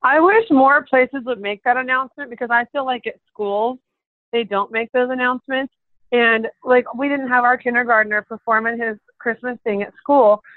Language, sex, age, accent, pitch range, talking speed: English, female, 30-49, American, 220-265 Hz, 180 wpm